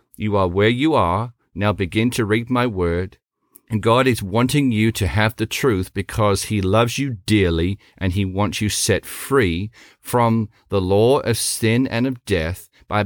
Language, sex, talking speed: English, male, 185 wpm